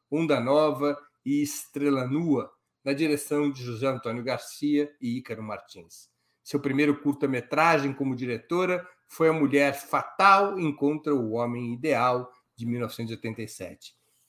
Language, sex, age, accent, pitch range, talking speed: Portuguese, male, 60-79, Brazilian, 120-155 Hz, 120 wpm